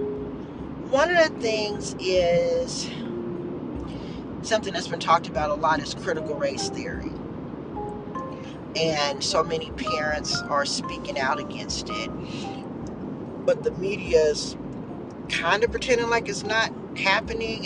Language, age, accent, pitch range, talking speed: English, 40-59, American, 160-215 Hz, 120 wpm